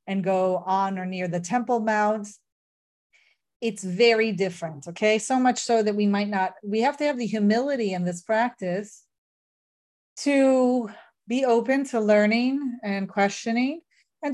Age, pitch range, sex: 40-59, 200-265 Hz, female